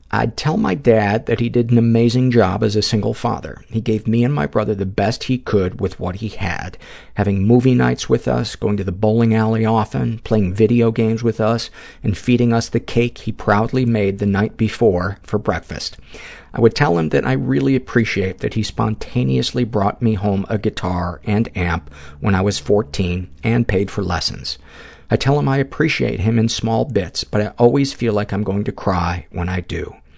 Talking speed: 205 wpm